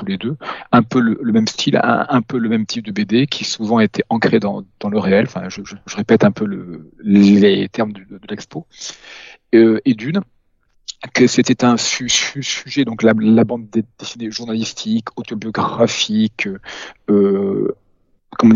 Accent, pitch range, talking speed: French, 110-140 Hz, 190 wpm